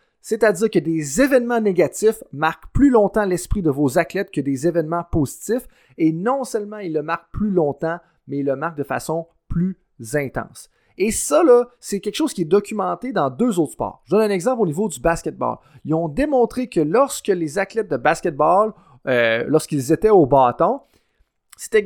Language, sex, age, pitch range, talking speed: French, male, 30-49, 150-210 Hz, 185 wpm